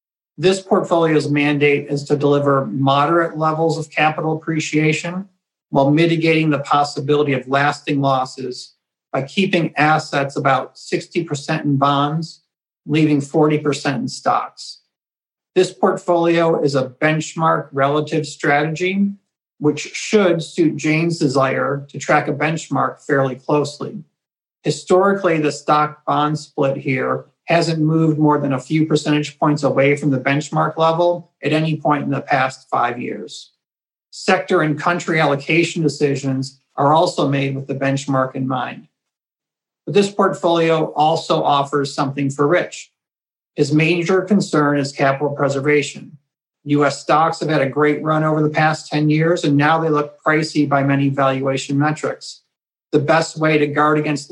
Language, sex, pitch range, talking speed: English, male, 140-160 Hz, 140 wpm